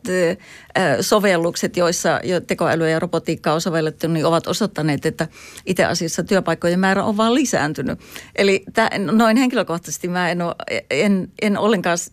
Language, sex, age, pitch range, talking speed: Finnish, female, 30-49, 165-210 Hz, 140 wpm